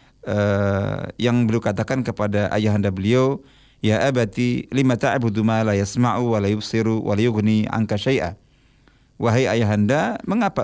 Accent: native